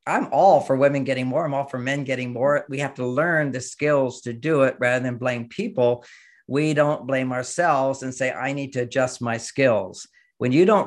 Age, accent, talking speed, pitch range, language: 50-69, American, 220 wpm, 130-160 Hz, English